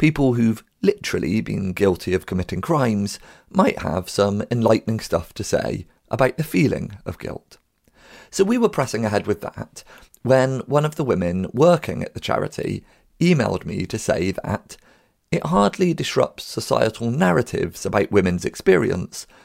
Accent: British